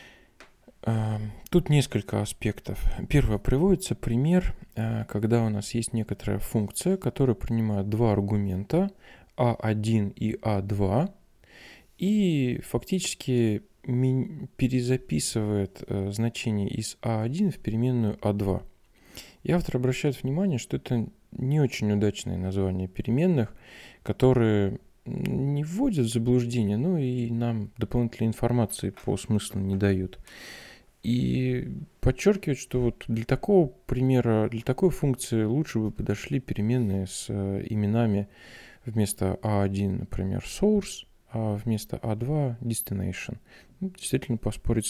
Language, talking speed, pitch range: Russian, 105 wpm, 100-130 Hz